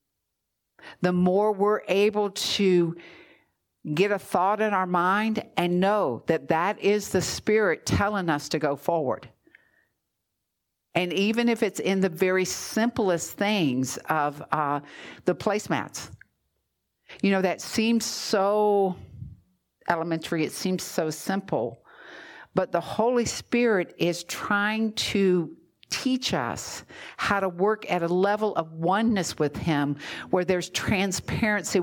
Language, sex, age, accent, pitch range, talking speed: English, female, 60-79, American, 170-210 Hz, 130 wpm